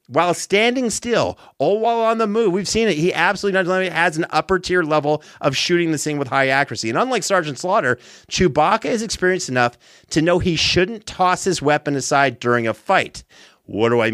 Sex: male